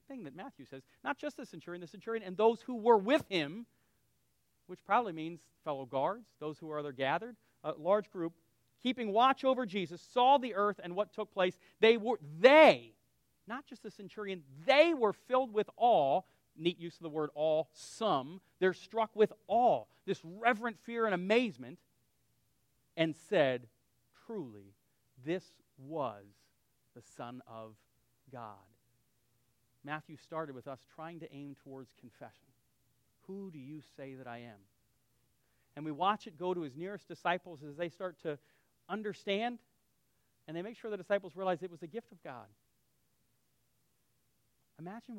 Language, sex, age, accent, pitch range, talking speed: English, male, 40-59, American, 130-205 Hz, 155 wpm